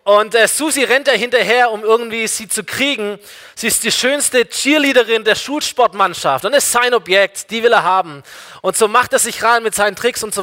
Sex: male